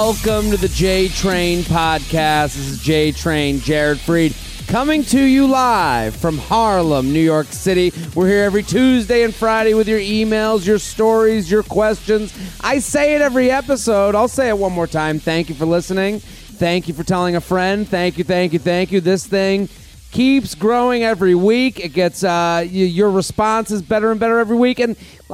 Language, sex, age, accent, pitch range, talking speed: English, male, 30-49, American, 155-225 Hz, 185 wpm